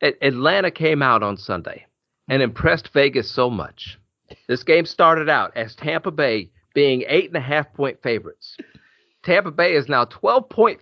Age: 40-59